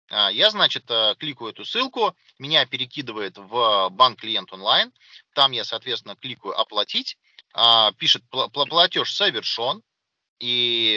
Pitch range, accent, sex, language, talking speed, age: 125-195 Hz, native, male, Russian, 105 wpm, 30-49